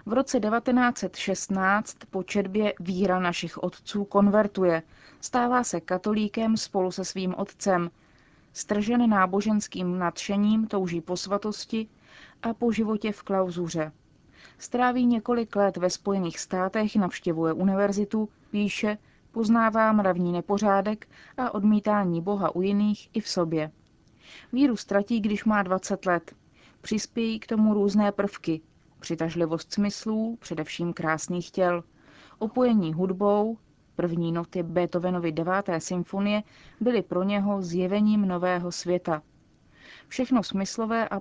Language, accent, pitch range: Czech, native, 180-215 Hz